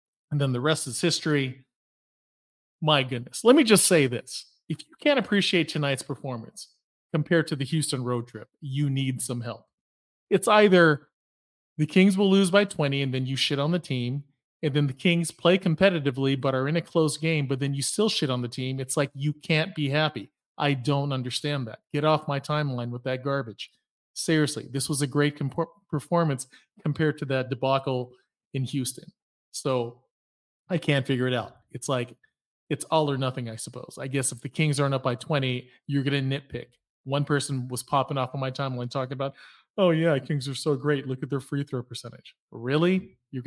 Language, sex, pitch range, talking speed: English, male, 130-155 Hz, 200 wpm